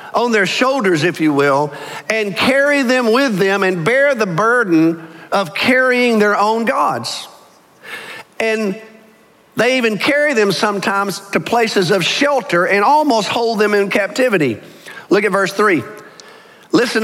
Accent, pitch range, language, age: American, 160-225 Hz, English, 50-69